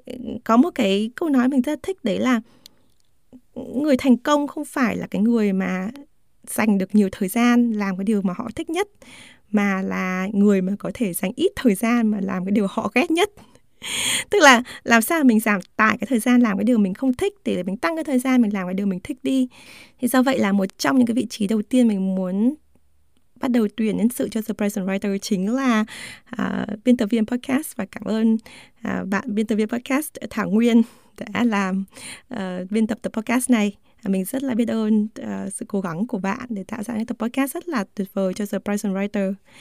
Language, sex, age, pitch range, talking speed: Vietnamese, female, 20-39, 200-255 Hz, 230 wpm